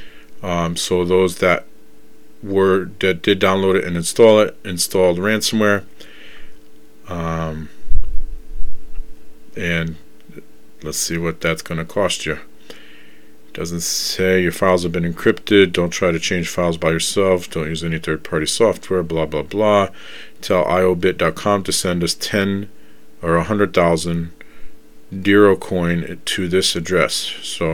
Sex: male